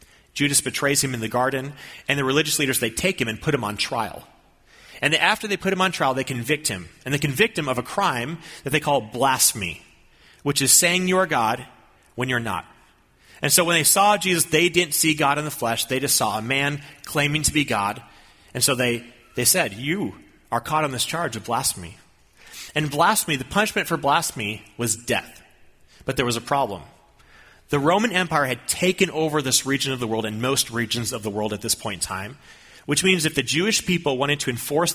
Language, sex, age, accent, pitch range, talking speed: English, male, 30-49, American, 120-160 Hz, 215 wpm